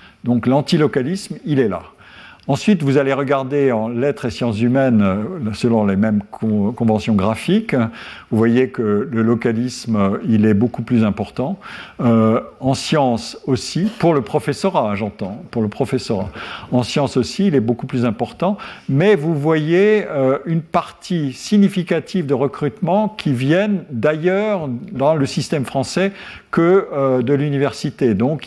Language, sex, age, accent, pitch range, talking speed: French, male, 50-69, French, 120-170 Hz, 145 wpm